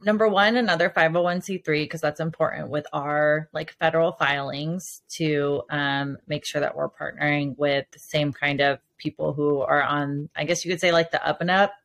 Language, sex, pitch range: English, female, 150-170 Hz